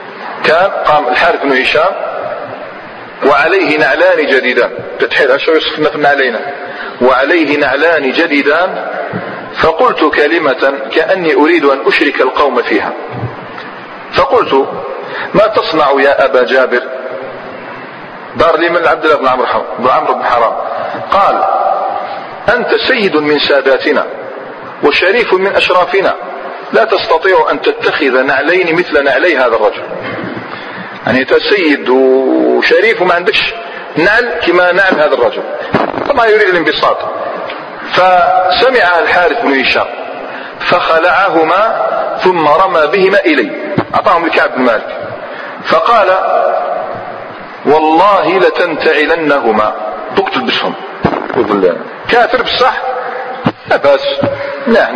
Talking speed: 95 wpm